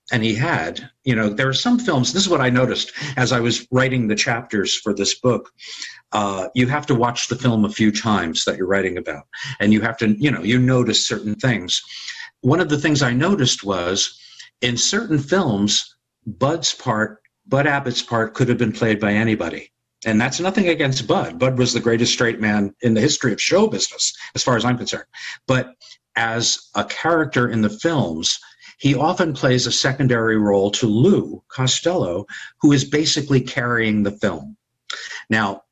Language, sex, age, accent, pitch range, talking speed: English, male, 50-69, American, 110-135 Hz, 190 wpm